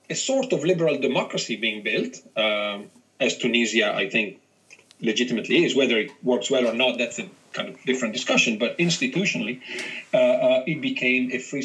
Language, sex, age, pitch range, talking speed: English, male, 40-59, 125-155 Hz, 175 wpm